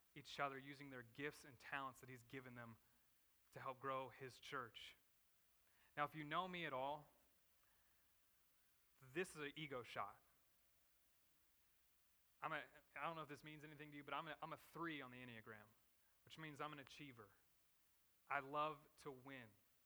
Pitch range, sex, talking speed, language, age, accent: 135-160 Hz, male, 170 wpm, English, 30-49, American